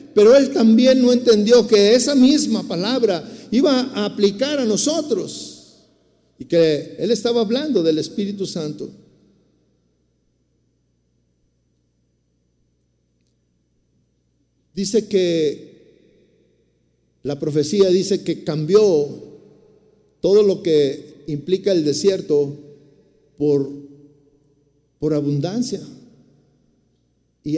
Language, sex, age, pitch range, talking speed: Spanish, male, 50-69, 150-245 Hz, 85 wpm